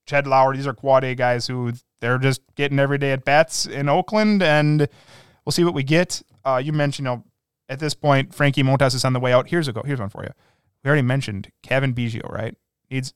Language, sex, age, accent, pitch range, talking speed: English, male, 20-39, American, 125-150 Hz, 235 wpm